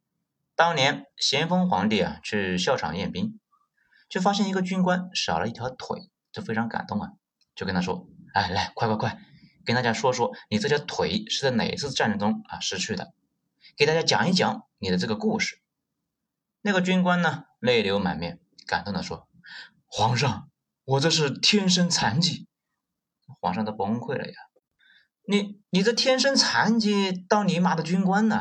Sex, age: male, 30-49